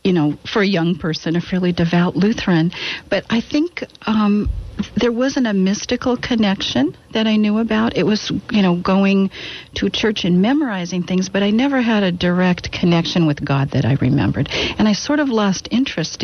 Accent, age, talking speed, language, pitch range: American, 50-69, 190 wpm, English, 175-210 Hz